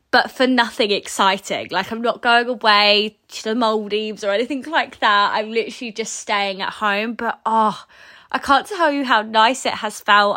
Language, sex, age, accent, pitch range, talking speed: English, female, 20-39, British, 195-225 Hz, 190 wpm